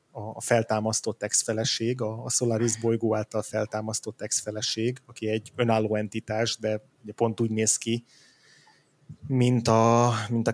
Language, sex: Hungarian, male